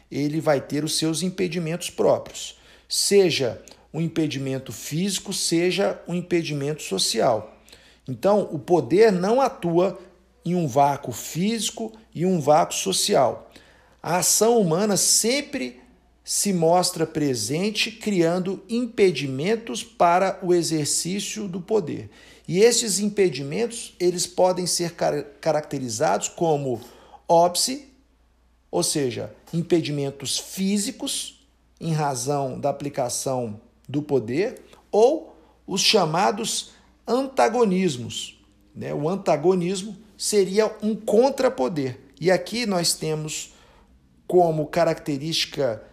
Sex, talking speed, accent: male, 100 wpm, Brazilian